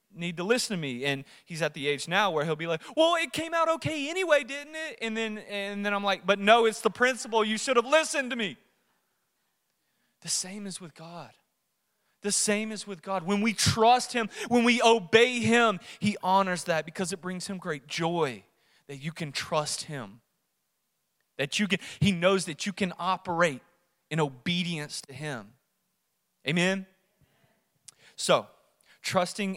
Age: 30-49